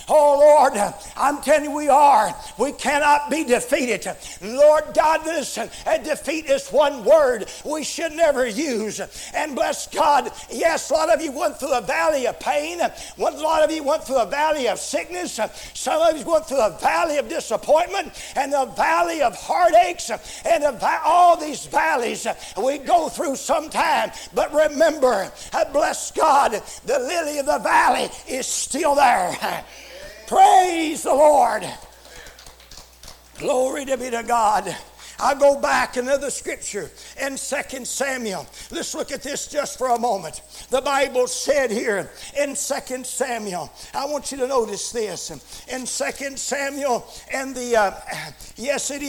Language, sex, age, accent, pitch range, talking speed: English, male, 60-79, American, 250-305 Hz, 150 wpm